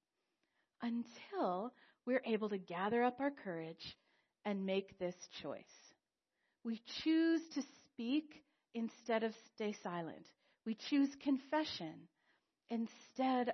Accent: American